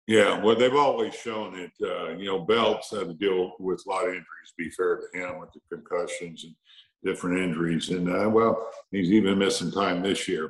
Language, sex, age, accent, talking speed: English, male, 60-79, American, 215 wpm